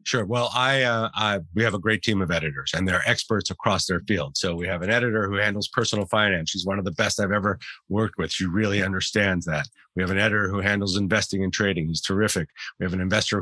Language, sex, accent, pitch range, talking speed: English, male, American, 95-115 Hz, 245 wpm